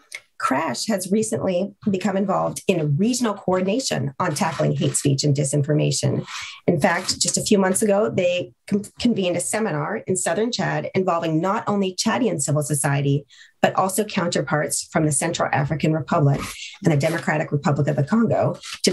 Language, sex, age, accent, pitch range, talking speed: English, female, 30-49, American, 155-215 Hz, 160 wpm